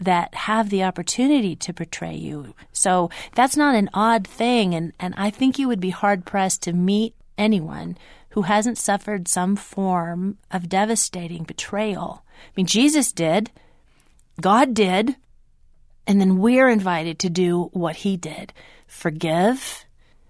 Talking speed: 140 wpm